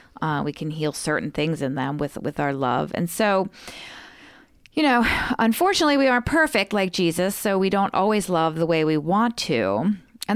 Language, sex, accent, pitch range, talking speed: English, female, American, 155-200 Hz, 190 wpm